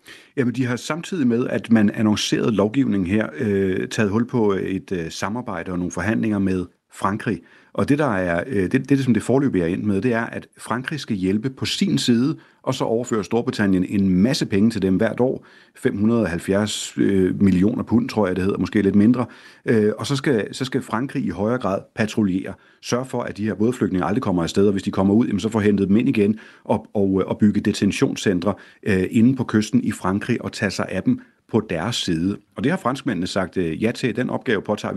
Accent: native